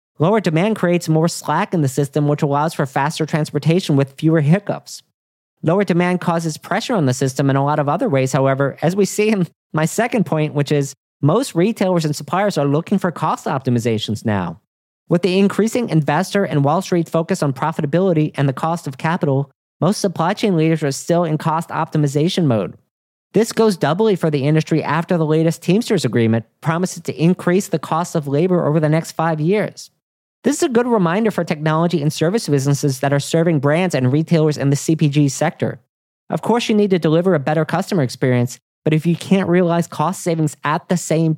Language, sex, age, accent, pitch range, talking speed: English, male, 40-59, American, 145-185 Hz, 200 wpm